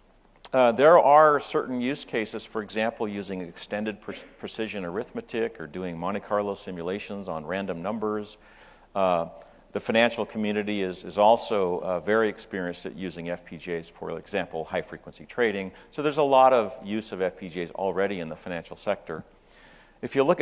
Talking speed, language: 155 wpm, English